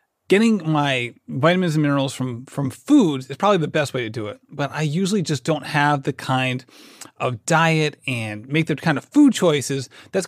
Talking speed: 200 wpm